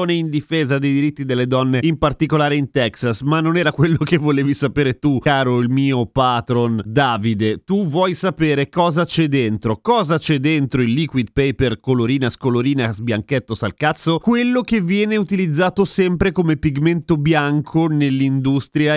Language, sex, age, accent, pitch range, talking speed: Italian, male, 30-49, native, 125-160 Hz, 150 wpm